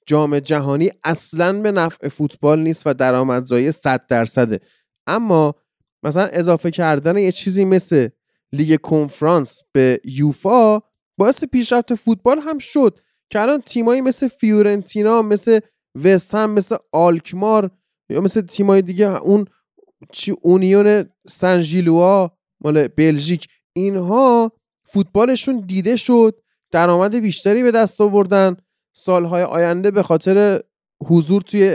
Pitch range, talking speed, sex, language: 170-220 Hz, 115 wpm, male, Persian